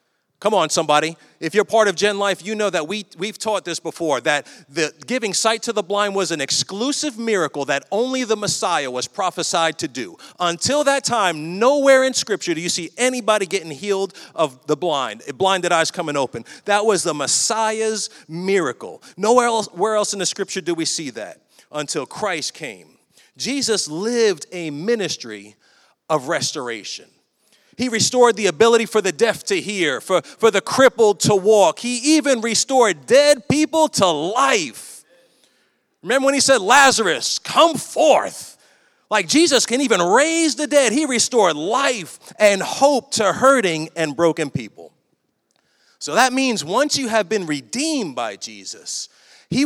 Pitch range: 165-235 Hz